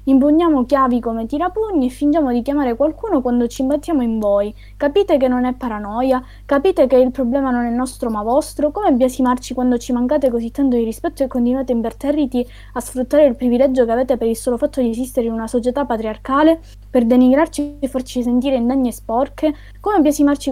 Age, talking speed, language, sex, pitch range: 20-39, 195 wpm, Italian, female, 225-285 Hz